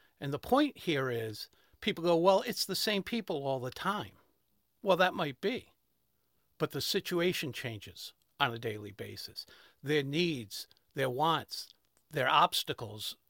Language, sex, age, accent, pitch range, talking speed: English, male, 50-69, American, 120-175 Hz, 150 wpm